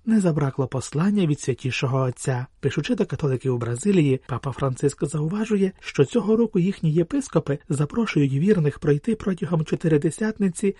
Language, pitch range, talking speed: Ukrainian, 140-195 Hz, 135 wpm